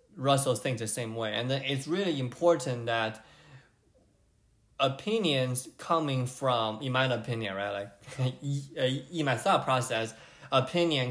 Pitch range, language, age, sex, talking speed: 115-150 Hz, English, 20-39, male, 130 wpm